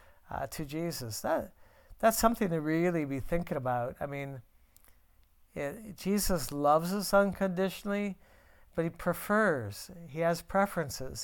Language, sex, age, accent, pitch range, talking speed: English, male, 60-79, American, 125-180 Hz, 115 wpm